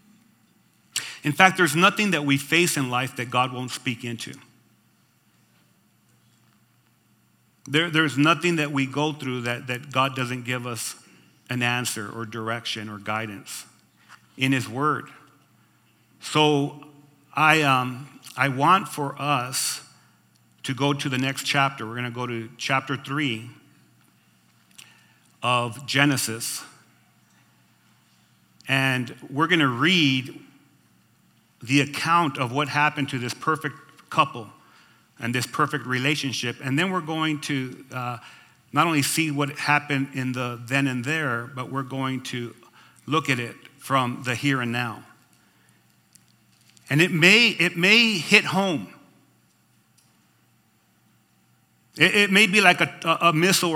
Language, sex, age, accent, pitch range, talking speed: English, male, 40-59, American, 125-155 Hz, 130 wpm